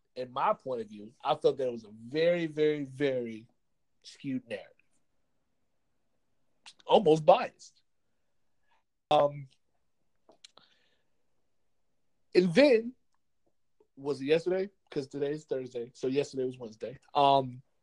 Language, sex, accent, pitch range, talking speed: English, male, American, 130-175 Hz, 110 wpm